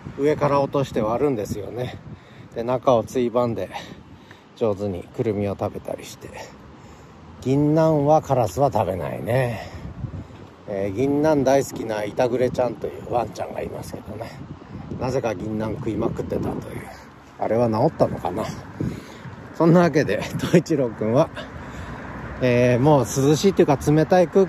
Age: 40-59